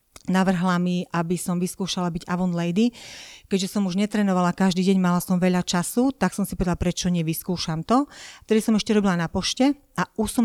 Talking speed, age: 195 wpm, 40-59